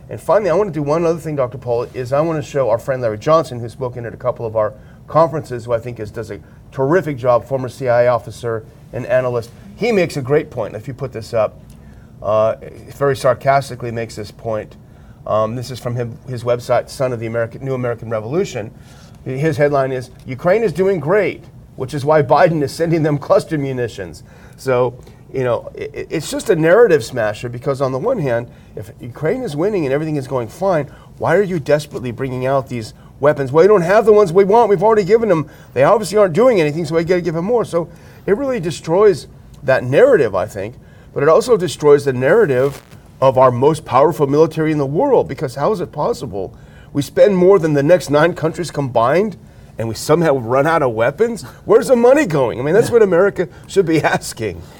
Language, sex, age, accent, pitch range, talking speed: English, male, 40-59, American, 125-170 Hz, 215 wpm